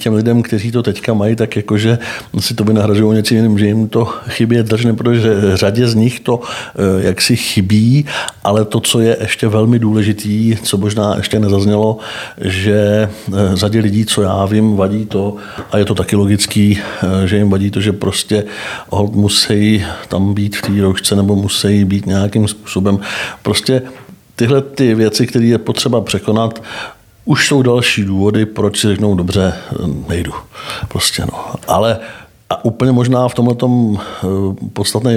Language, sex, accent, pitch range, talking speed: Czech, male, native, 100-115 Hz, 160 wpm